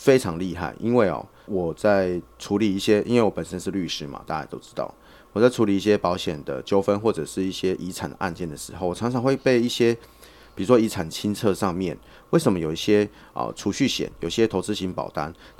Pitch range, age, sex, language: 90-110 Hz, 30-49, male, Chinese